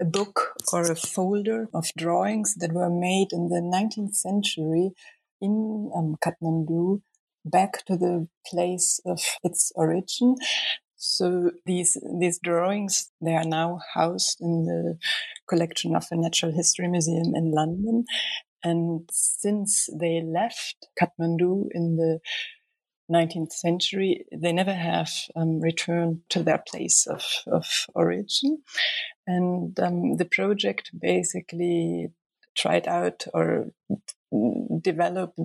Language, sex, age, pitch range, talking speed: English, female, 30-49, 165-185 Hz, 120 wpm